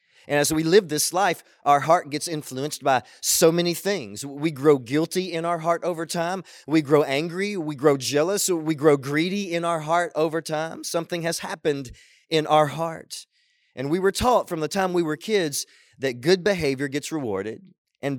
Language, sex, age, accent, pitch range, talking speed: English, male, 30-49, American, 145-185 Hz, 190 wpm